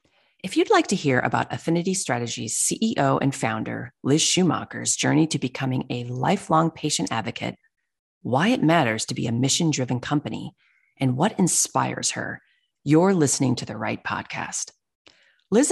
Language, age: English, 30-49